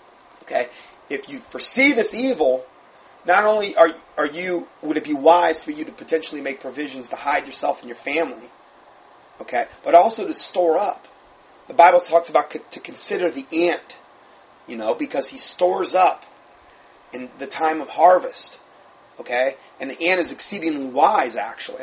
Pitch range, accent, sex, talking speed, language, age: 155-210 Hz, American, male, 170 wpm, English, 30-49